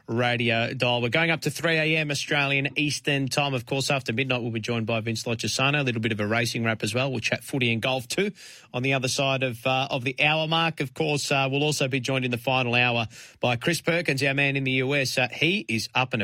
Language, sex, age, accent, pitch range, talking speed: English, male, 30-49, Australian, 115-145 Hz, 260 wpm